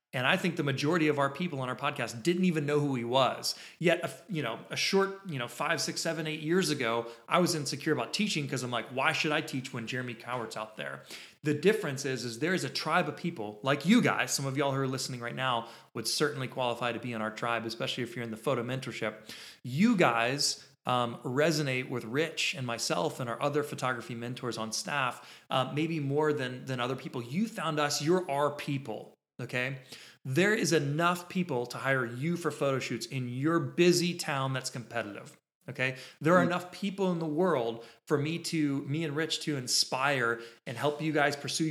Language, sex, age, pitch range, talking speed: English, male, 30-49, 120-160 Hz, 215 wpm